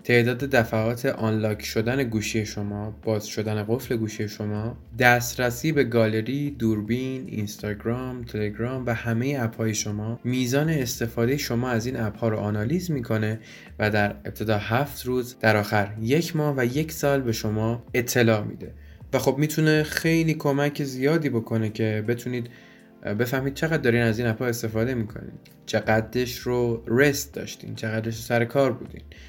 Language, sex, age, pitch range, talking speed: Persian, male, 20-39, 110-130 Hz, 155 wpm